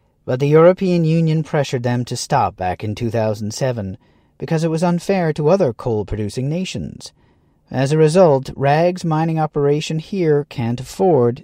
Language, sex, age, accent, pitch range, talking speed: English, male, 40-59, American, 120-160 Hz, 145 wpm